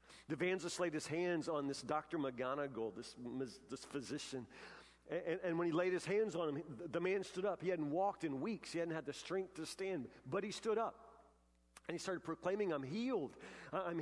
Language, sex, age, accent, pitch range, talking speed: English, male, 50-69, American, 120-185 Hz, 200 wpm